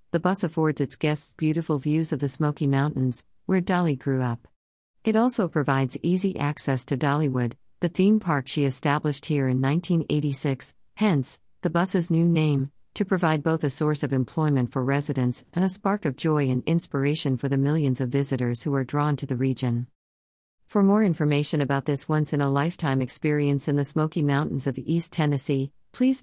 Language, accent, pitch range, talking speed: English, American, 130-160 Hz, 175 wpm